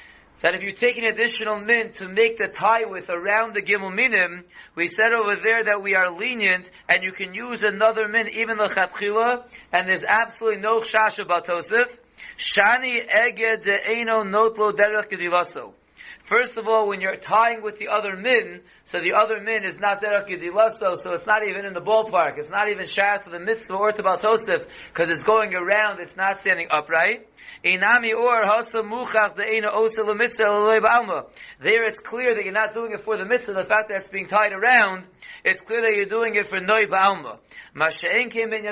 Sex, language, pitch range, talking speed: male, English, 190-225 Hz, 175 wpm